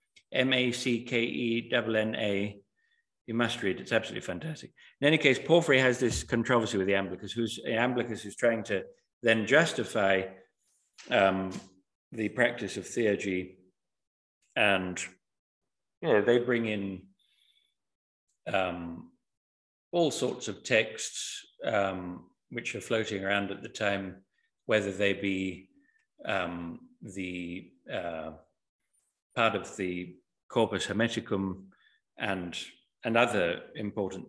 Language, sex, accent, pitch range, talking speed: English, male, British, 95-120 Hz, 120 wpm